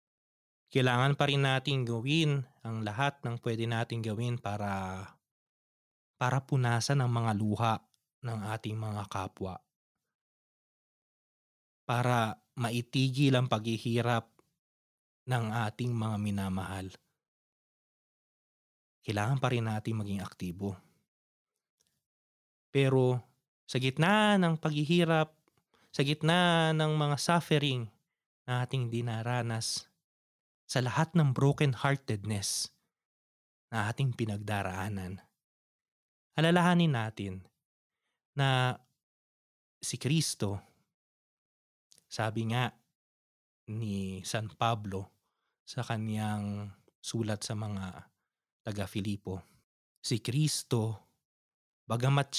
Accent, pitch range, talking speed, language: native, 100-135 Hz, 85 wpm, Filipino